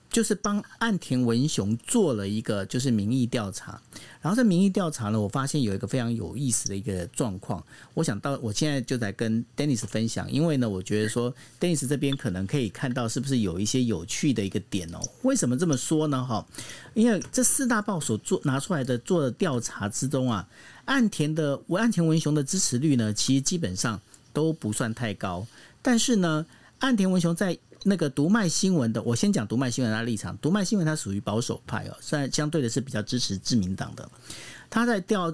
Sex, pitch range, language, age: male, 110-165 Hz, Chinese, 50-69